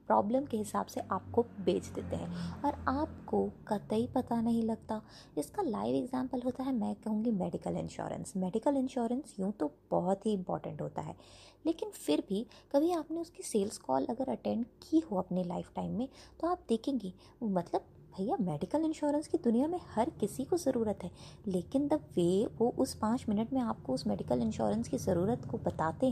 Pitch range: 190-265 Hz